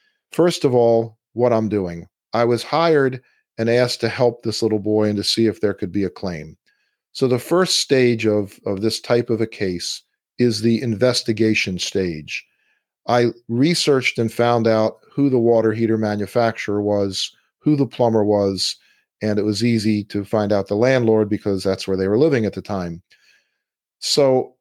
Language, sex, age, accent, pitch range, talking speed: English, male, 50-69, American, 105-120 Hz, 180 wpm